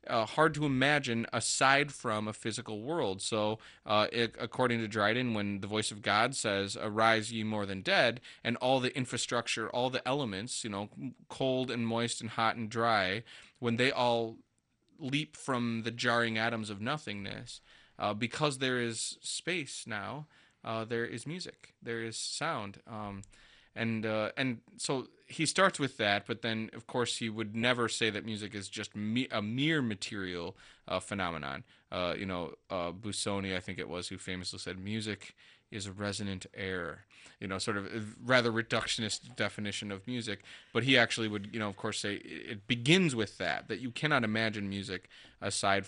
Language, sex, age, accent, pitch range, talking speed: English, male, 20-39, American, 100-120 Hz, 180 wpm